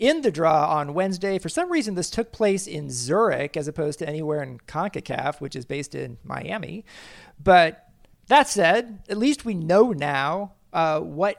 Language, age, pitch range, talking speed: English, 40-59, 150-195 Hz, 180 wpm